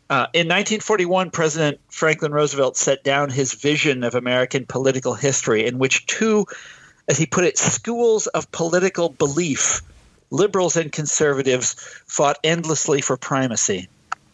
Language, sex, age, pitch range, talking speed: English, male, 50-69, 125-160 Hz, 135 wpm